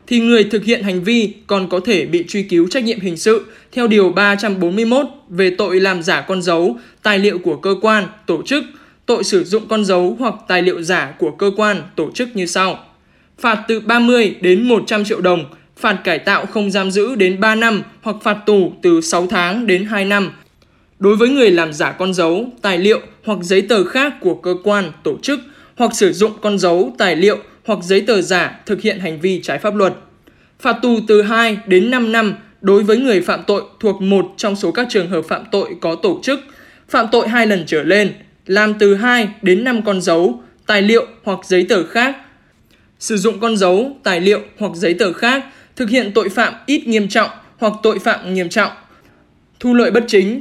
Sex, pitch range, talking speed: male, 185-230 Hz, 210 wpm